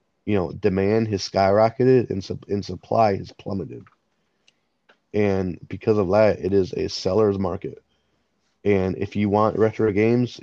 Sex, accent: male, American